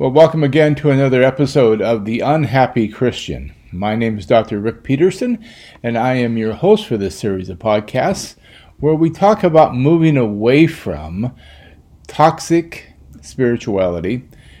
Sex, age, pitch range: male, 40-59, 110-145 Hz